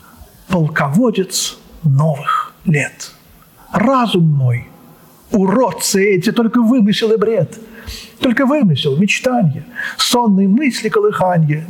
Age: 50-69